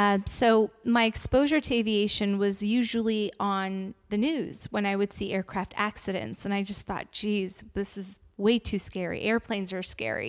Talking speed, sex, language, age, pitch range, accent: 175 wpm, female, English, 20-39, 200-230 Hz, American